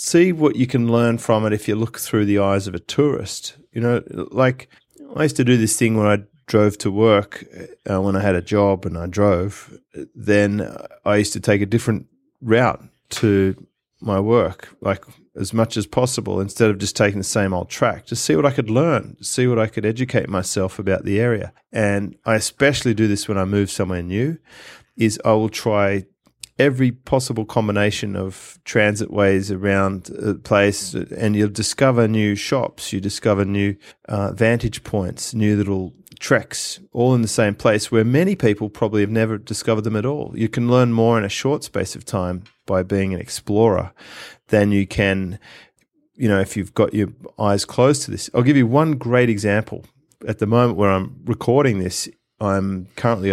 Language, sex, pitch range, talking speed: English, male, 100-120 Hz, 195 wpm